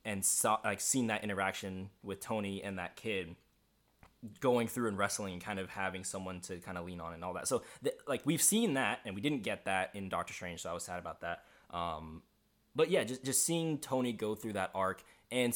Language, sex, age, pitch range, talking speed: English, male, 20-39, 95-110 Hz, 230 wpm